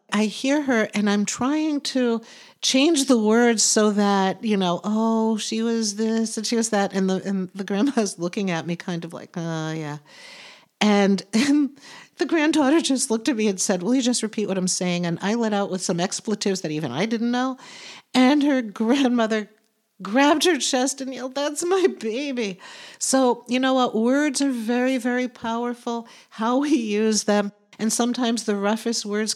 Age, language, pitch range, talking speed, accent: 50-69, English, 185-240 Hz, 190 wpm, American